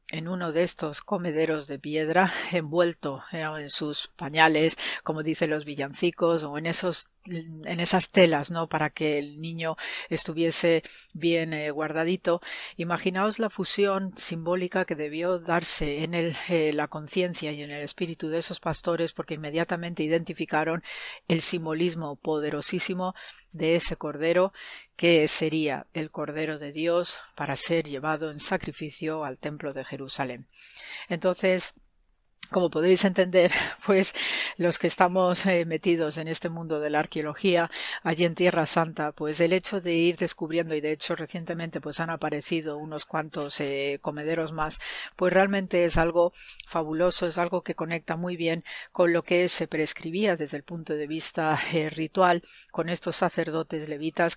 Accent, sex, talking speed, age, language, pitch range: Spanish, female, 150 wpm, 40-59, Spanish, 155-175 Hz